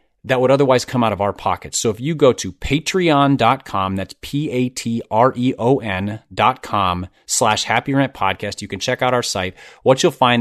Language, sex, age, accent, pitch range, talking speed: English, male, 30-49, American, 105-140 Hz, 155 wpm